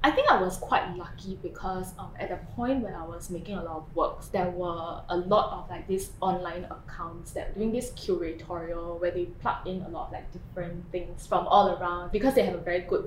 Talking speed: 240 wpm